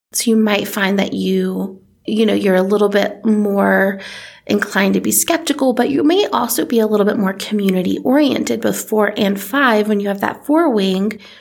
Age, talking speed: 30-49, 200 wpm